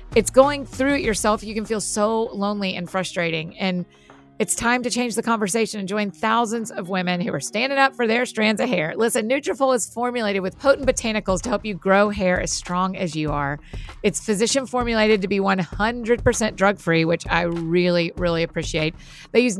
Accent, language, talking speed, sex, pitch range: American, English, 200 wpm, female, 185-235 Hz